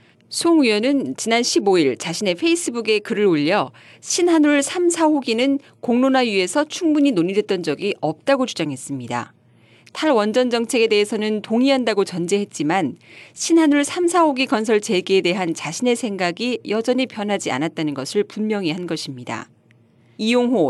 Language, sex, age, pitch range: Korean, female, 40-59, 170-255 Hz